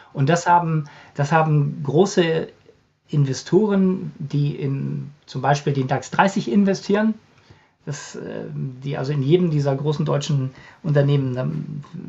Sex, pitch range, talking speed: male, 140-175 Hz, 115 wpm